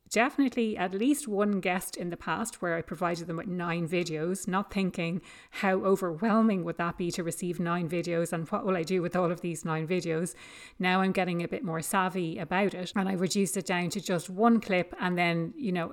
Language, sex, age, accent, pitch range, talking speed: English, female, 30-49, Irish, 165-195 Hz, 220 wpm